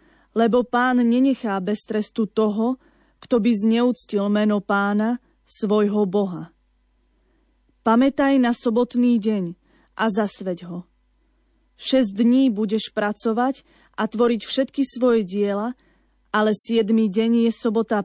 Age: 20-39